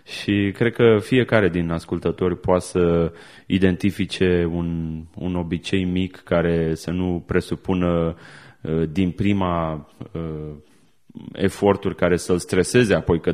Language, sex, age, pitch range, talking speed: Romanian, male, 30-49, 90-115 Hz, 115 wpm